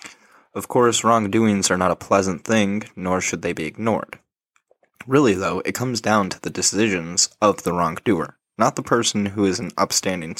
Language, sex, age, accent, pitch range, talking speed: English, male, 20-39, American, 90-110 Hz, 180 wpm